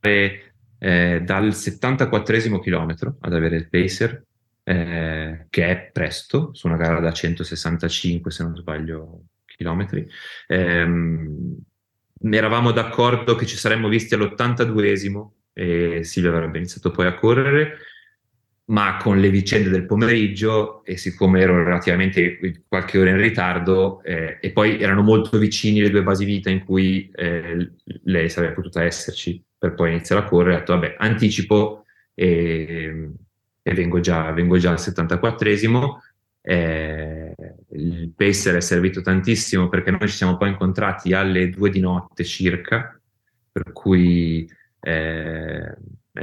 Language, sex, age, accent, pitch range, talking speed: Italian, male, 30-49, native, 85-105 Hz, 140 wpm